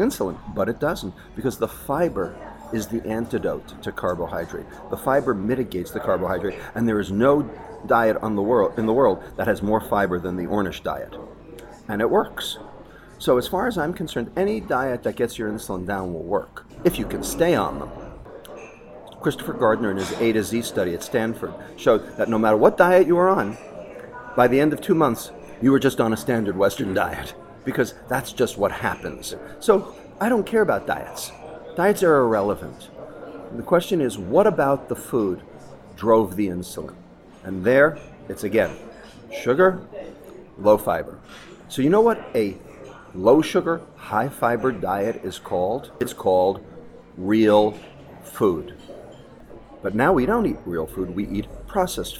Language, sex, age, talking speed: English, male, 40-59, 170 wpm